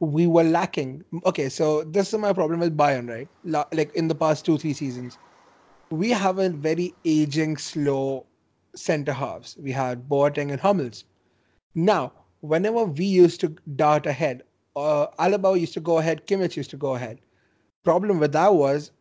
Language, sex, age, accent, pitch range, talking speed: English, male, 30-49, Indian, 145-170 Hz, 170 wpm